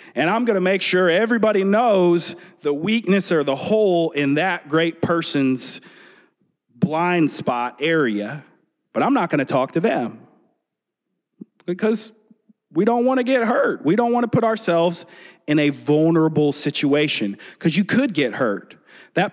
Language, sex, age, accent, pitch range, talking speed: English, male, 40-59, American, 160-220 Hz, 160 wpm